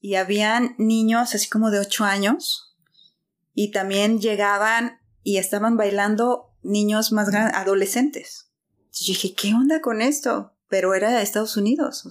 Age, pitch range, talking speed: 30-49, 195-235 Hz, 155 wpm